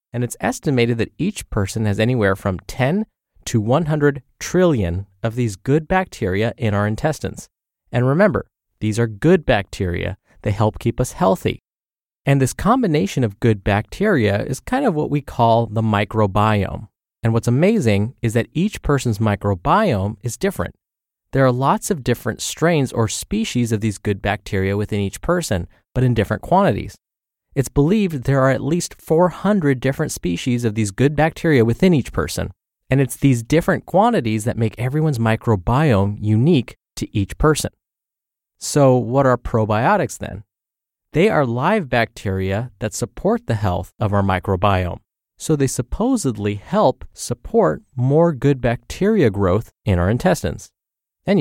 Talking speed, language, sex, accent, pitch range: 155 wpm, English, male, American, 105-140 Hz